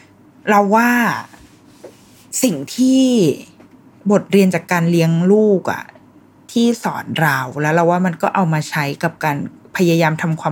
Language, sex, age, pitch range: Thai, female, 20-39, 145-185 Hz